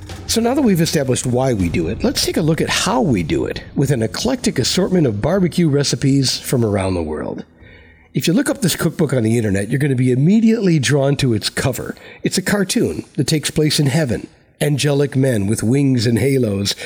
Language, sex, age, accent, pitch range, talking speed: English, male, 60-79, American, 115-165 Hz, 215 wpm